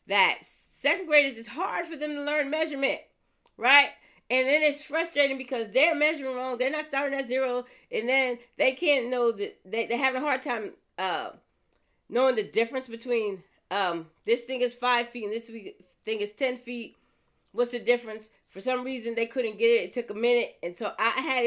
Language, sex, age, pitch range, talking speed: English, female, 40-59, 195-265 Hz, 195 wpm